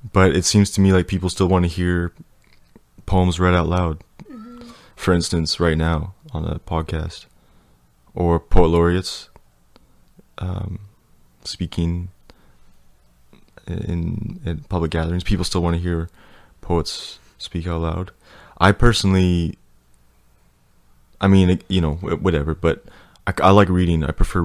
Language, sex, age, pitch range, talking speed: English, male, 20-39, 80-90 Hz, 135 wpm